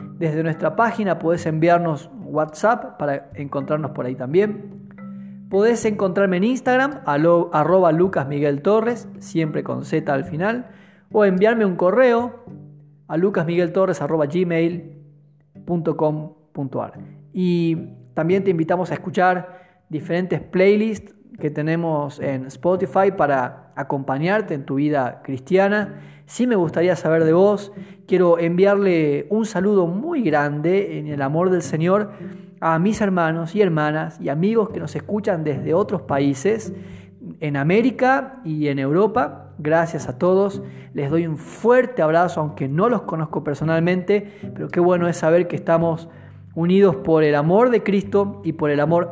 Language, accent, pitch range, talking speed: Spanish, Argentinian, 155-200 Hz, 135 wpm